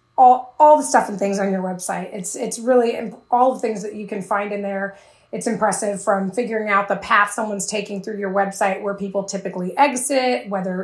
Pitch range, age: 195-220 Hz, 20-39